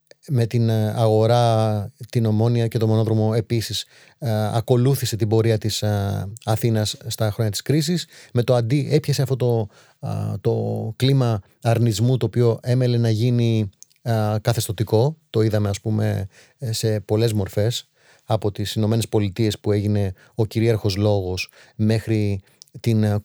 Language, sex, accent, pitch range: Greek, male, native, 110-130 Hz